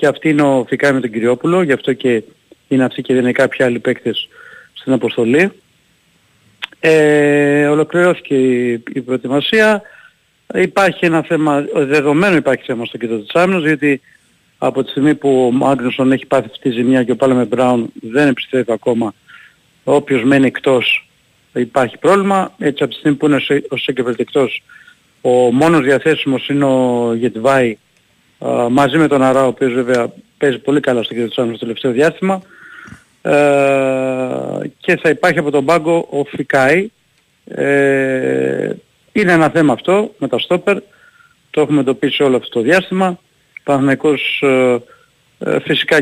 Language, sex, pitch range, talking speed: Greek, male, 125-150 Hz, 160 wpm